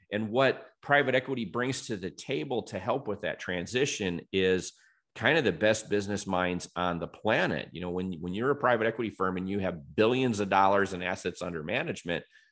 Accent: American